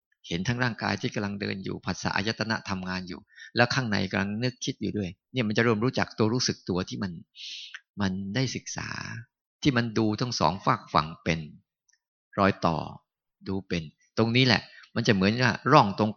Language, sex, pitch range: Thai, male, 100-125 Hz